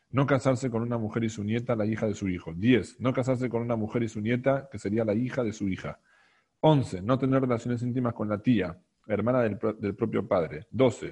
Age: 40-59